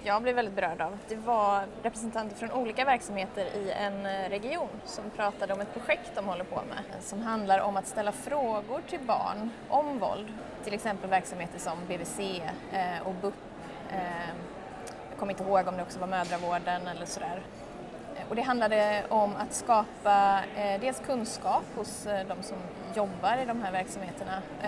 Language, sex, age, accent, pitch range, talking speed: Swedish, female, 20-39, native, 195-225 Hz, 165 wpm